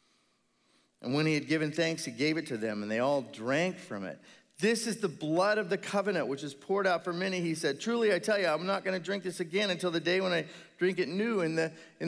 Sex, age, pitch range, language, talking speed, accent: male, 40-59, 200-260 Hz, English, 260 wpm, American